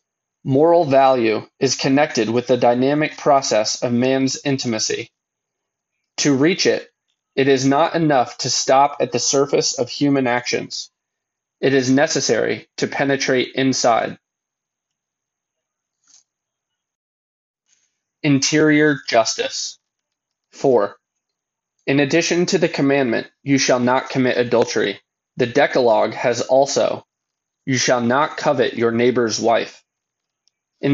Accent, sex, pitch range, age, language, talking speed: American, male, 125-145 Hz, 20-39, English, 110 wpm